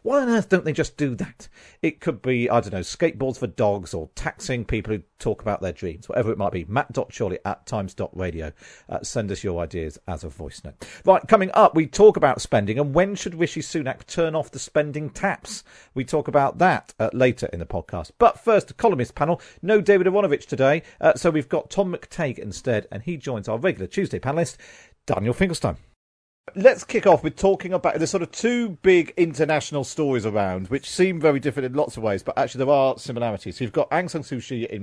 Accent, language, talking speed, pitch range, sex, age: British, English, 215 wpm, 110-160 Hz, male, 40-59